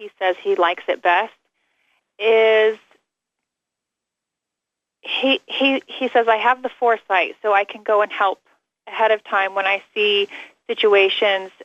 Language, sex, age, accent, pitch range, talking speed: English, female, 30-49, American, 195-255 Hz, 145 wpm